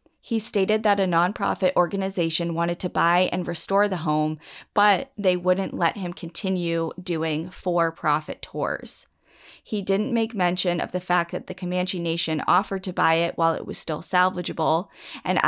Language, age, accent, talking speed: English, 20-39, American, 165 wpm